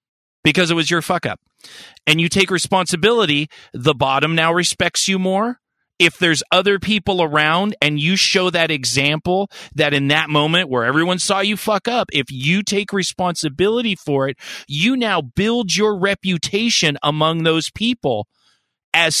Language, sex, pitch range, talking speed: English, male, 155-210 Hz, 160 wpm